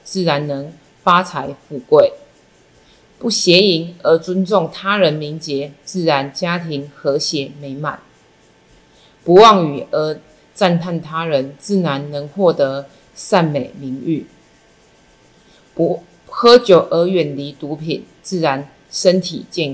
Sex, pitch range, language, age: female, 145-185 Hz, Chinese, 30-49